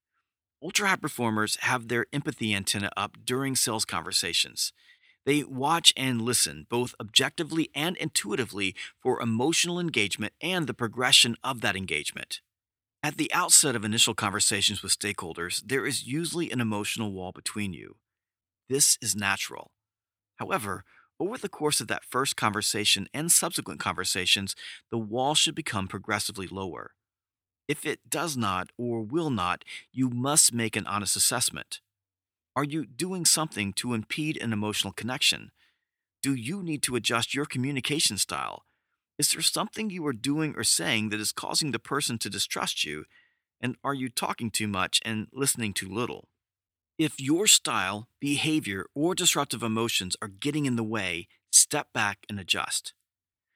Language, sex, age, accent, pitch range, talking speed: English, male, 40-59, American, 105-145 Hz, 150 wpm